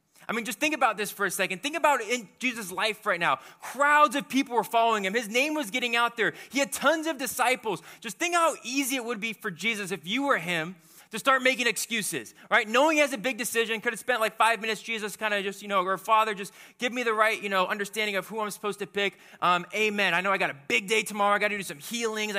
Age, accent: 20-39, American